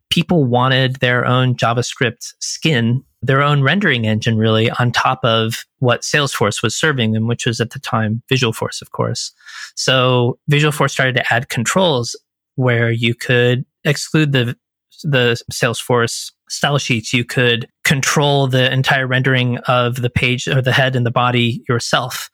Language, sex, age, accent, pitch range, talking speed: English, male, 20-39, American, 120-135 Hz, 155 wpm